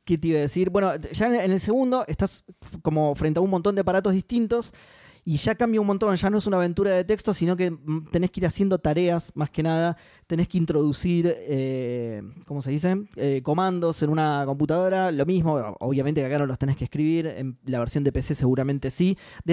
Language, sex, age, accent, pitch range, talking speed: Spanish, male, 20-39, Argentinian, 145-190 Hz, 220 wpm